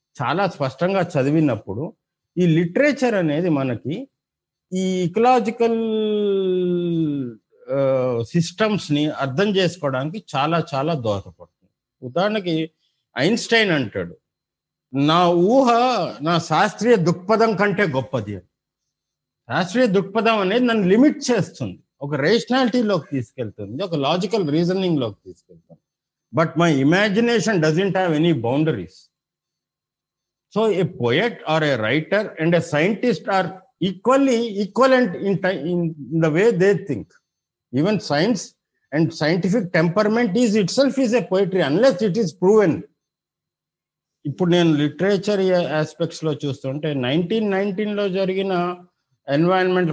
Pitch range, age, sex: 150-210 Hz, 50-69, male